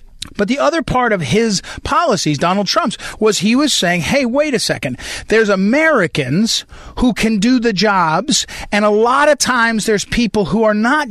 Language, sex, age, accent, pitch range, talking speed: English, male, 40-59, American, 180-250 Hz, 185 wpm